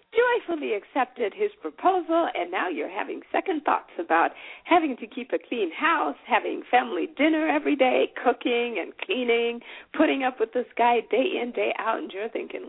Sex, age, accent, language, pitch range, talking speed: female, 50-69, American, English, 235-365 Hz, 175 wpm